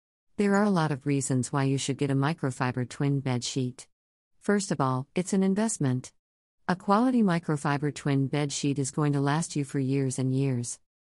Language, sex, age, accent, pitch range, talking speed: English, female, 50-69, American, 130-170 Hz, 195 wpm